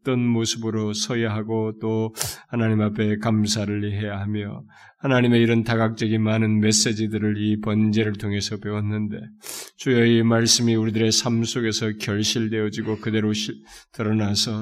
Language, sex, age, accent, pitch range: Korean, male, 20-39, native, 105-115 Hz